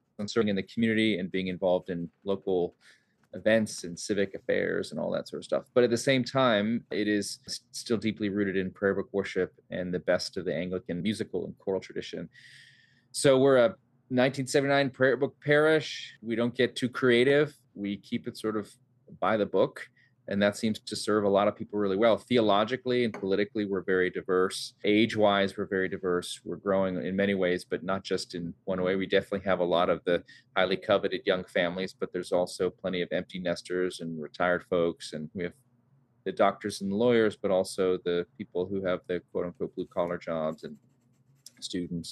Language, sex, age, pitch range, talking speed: English, male, 30-49, 90-120 Hz, 190 wpm